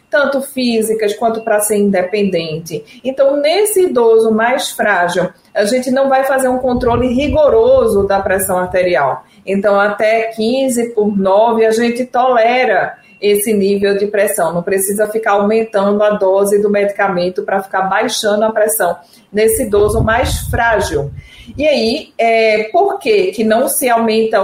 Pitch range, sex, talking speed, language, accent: 200-250 Hz, female, 145 wpm, Portuguese, Brazilian